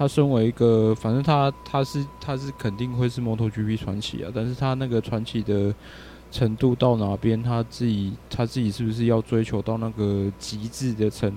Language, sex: Chinese, male